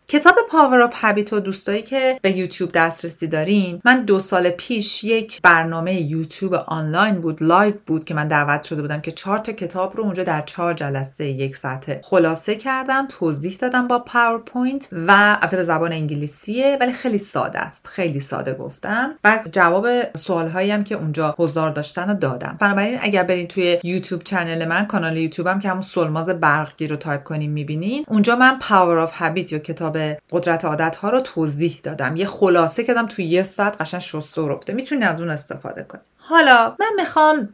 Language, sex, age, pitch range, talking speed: Persian, female, 40-59, 160-220 Hz, 185 wpm